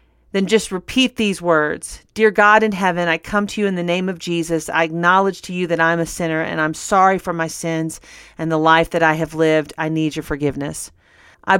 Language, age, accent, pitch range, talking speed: English, 40-59, American, 160-185 Hz, 230 wpm